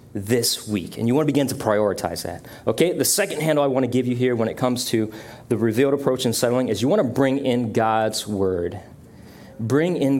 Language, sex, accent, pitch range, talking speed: English, male, American, 110-130 Hz, 230 wpm